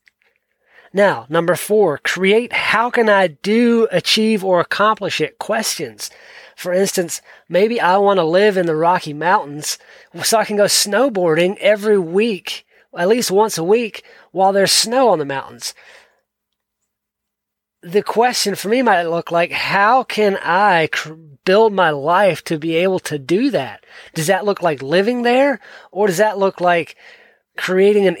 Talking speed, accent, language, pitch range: 155 wpm, American, English, 165-210 Hz